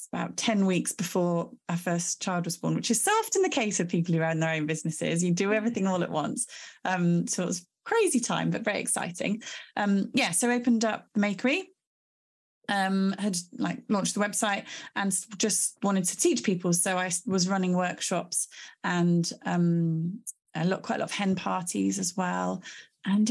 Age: 30-49